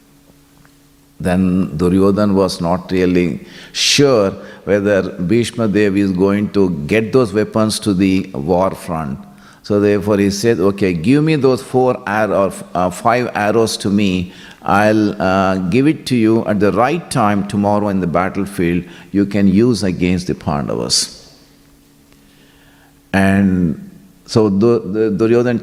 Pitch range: 95-120 Hz